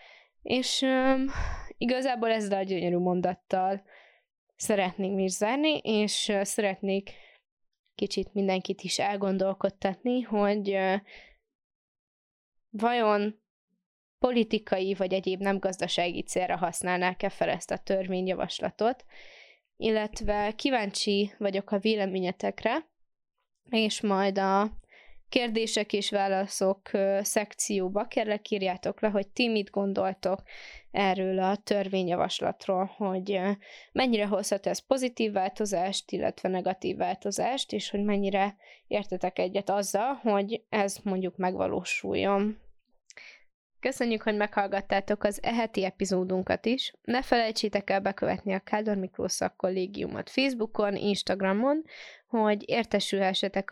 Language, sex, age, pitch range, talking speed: Hungarian, female, 20-39, 190-220 Hz, 95 wpm